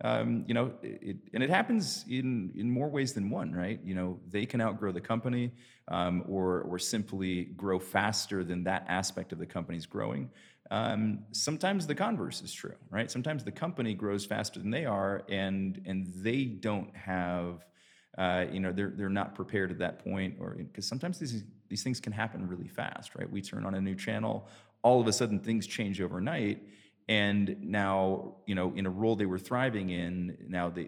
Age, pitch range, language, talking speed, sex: 30-49, 90-115 Hz, English, 195 wpm, male